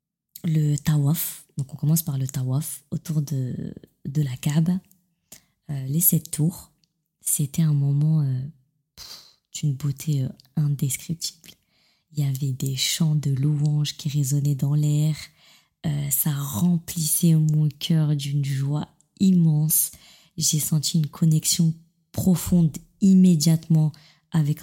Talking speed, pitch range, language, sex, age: 125 wpm, 145-170 Hz, French, female, 20-39